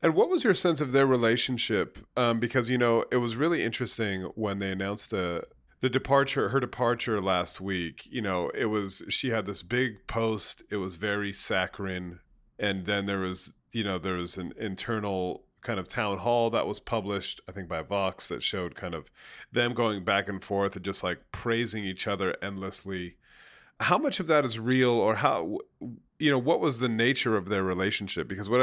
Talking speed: 200 wpm